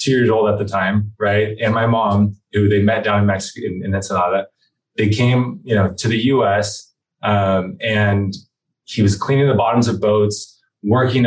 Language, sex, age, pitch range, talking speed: English, male, 20-39, 105-135 Hz, 190 wpm